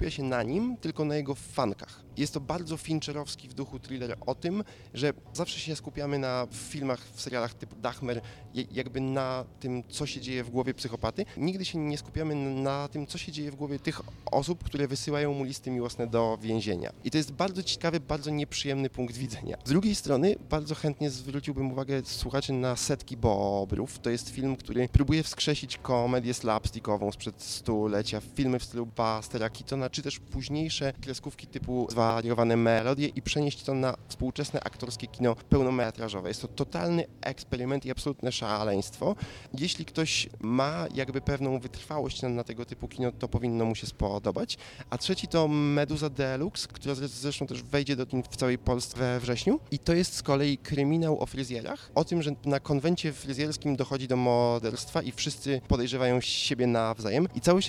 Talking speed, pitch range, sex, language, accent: 175 wpm, 120-145 Hz, male, Polish, native